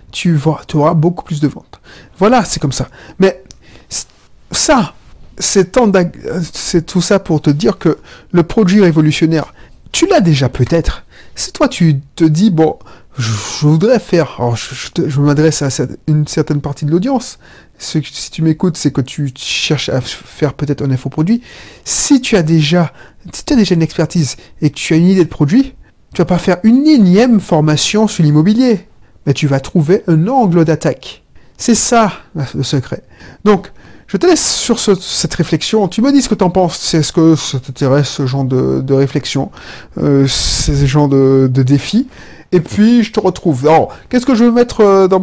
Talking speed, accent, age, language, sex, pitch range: 185 wpm, French, 30-49, French, male, 140-195 Hz